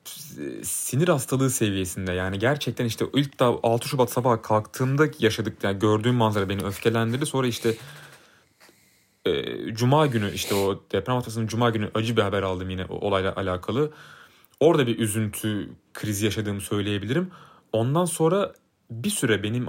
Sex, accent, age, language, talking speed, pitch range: male, native, 30-49, Turkish, 145 wpm, 100-135 Hz